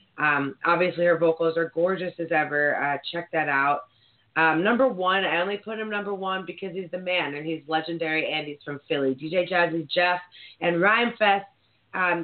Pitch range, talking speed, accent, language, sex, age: 145-185 Hz, 190 wpm, American, English, female, 20-39